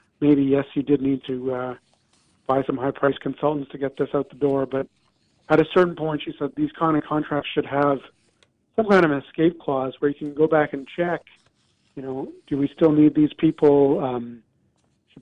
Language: English